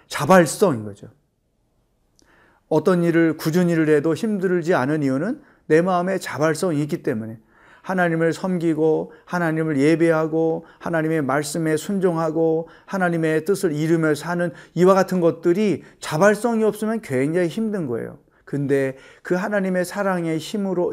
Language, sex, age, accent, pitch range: Korean, male, 40-59, native, 140-180 Hz